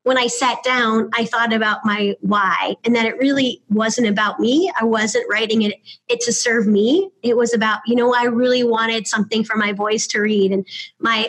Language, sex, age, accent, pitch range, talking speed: English, female, 20-39, American, 210-250 Hz, 215 wpm